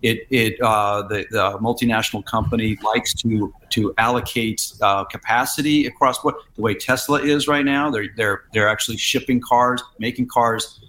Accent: American